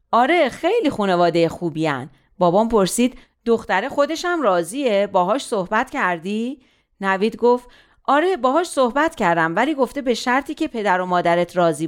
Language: Persian